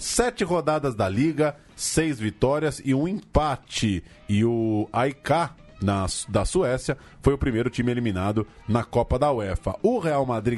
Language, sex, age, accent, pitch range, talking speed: Portuguese, male, 20-39, Brazilian, 115-155 Hz, 155 wpm